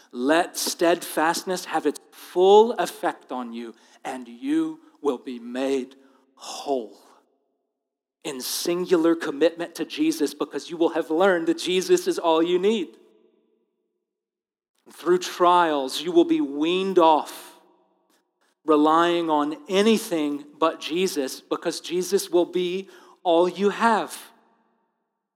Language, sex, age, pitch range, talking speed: English, male, 40-59, 150-195 Hz, 115 wpm